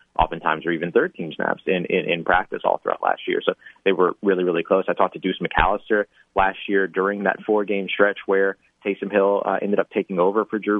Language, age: English, 30-49